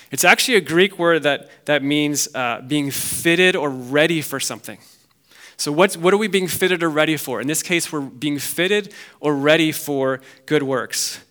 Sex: male